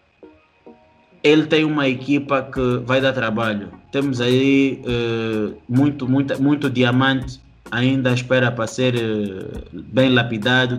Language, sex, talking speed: Portuguese, male, 105 wpm